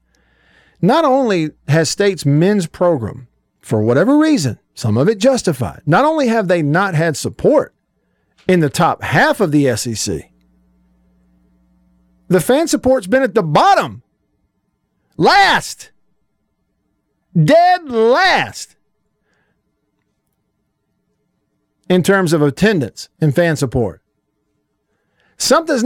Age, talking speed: 50-69, 105 wpm